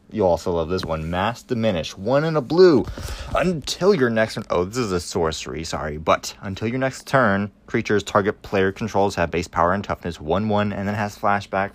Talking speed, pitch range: 205 wpm, 85-115 Hz